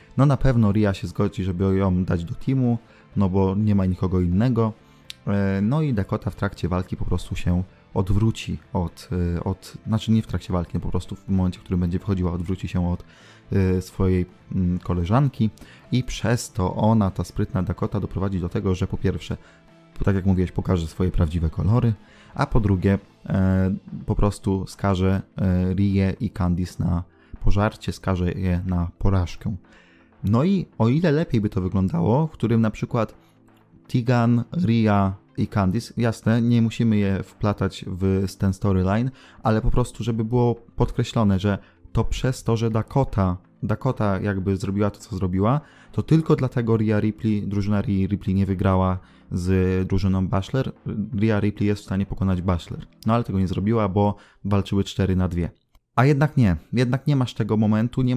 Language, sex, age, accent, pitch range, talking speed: Polish, male, 20-39, native, 95-115 Hz, 170 wpm